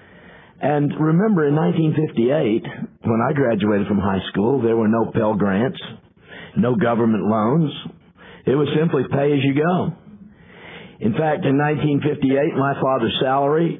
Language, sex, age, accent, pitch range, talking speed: English, male, 50-69, American, 120-145 Hz, 125 wpm